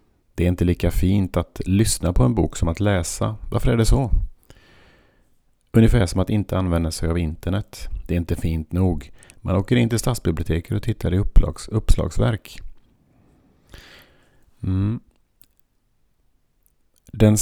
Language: Swedish